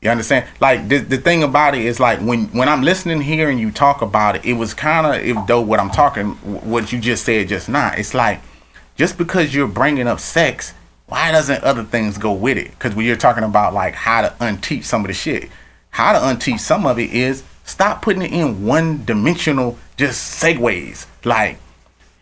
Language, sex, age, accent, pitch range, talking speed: English, male, 30-49, American, 110-155 Hz, 215 wpm